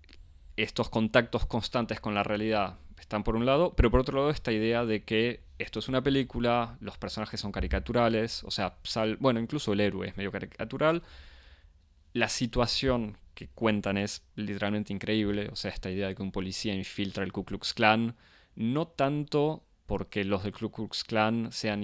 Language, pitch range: Spanish, 95-125 Hz